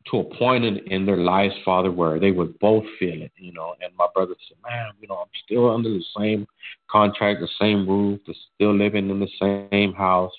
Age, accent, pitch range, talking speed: 50-69, American, 90-110 Hz, 225 wpm